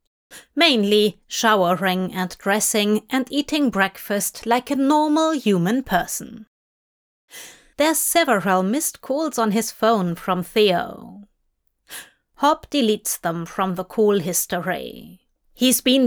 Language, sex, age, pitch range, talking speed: English, female, 30-49, 195-250 Hz, 110 wpm